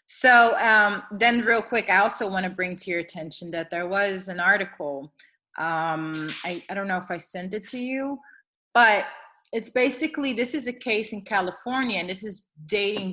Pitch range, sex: 175-225 Hz, female